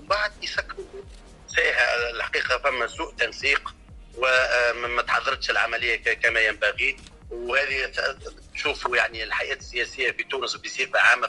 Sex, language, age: male, Arabic, 40-59